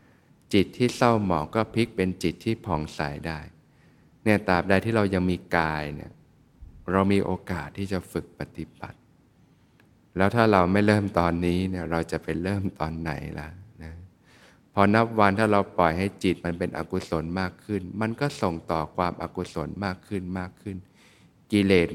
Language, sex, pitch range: Thai, male, 85-105 Hz